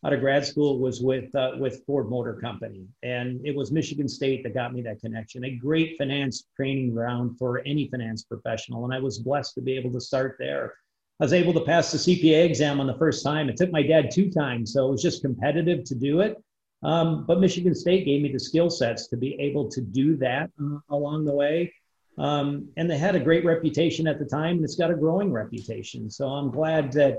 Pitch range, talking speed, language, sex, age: 130-155 Hz, 225 wpm, English, male, 50-69